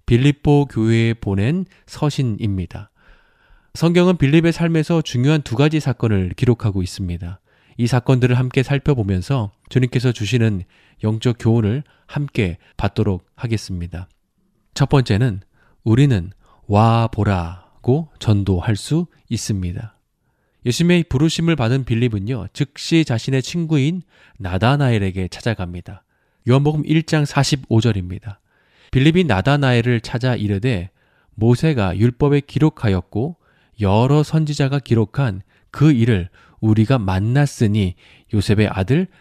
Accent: native